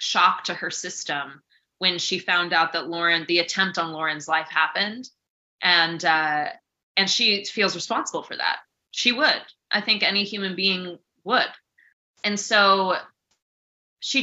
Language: English